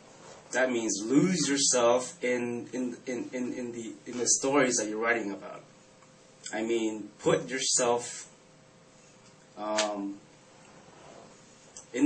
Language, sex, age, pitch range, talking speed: English, male, 20-39, 105-135 Hz, 115 wpm